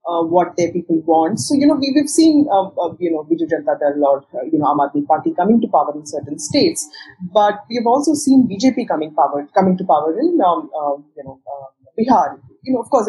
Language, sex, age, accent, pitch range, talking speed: English, female, 30-49, Indian, 160-245 Hz, 235 wpm